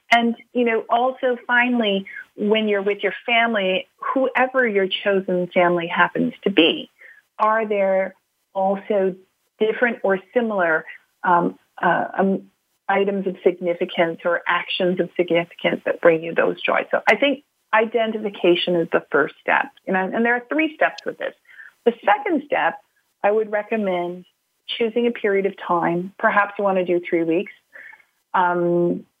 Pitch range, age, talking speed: 180-230 Hz, 30-49, 150 wpm